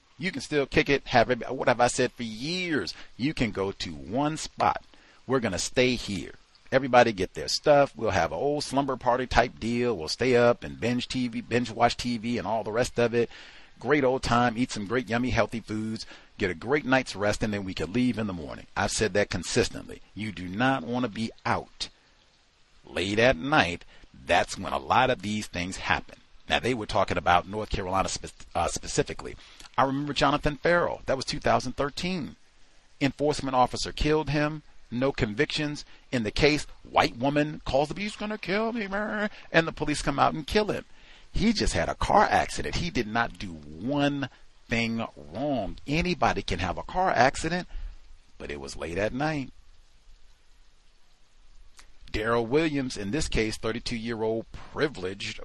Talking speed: 185 wpm